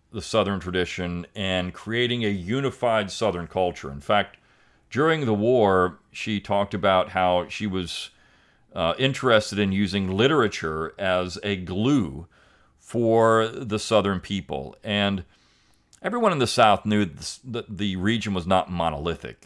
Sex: male